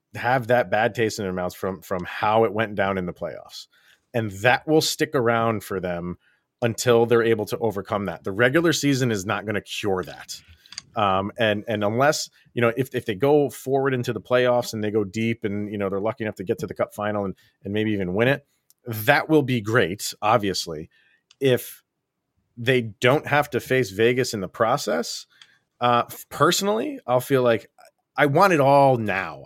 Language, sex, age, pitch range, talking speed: English, male, 40-59, 100-125 Hz, 200 wpm